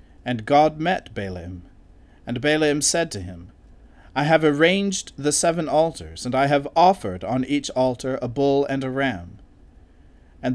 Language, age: English, 40-59